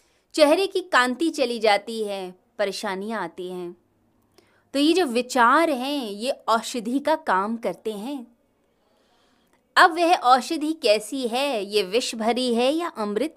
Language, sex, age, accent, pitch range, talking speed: Hindi, female, 20-39, native, 205-285 Hz, 140 wpm